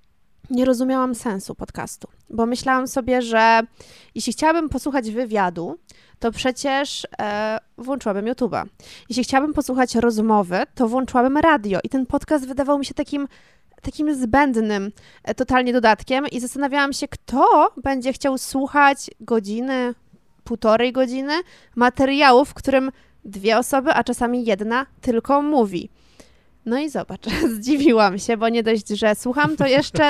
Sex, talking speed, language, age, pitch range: female, 130 wpm, Polish, 20-39, 225-270 Hz